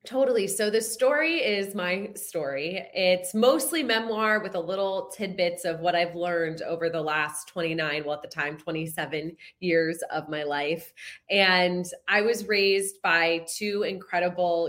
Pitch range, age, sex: 165-205 Hz, 20-39, female